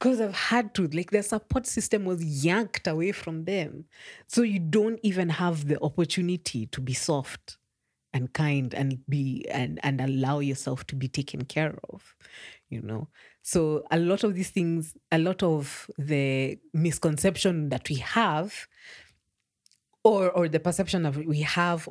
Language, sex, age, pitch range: English, female, 30-49, 135-170 Hz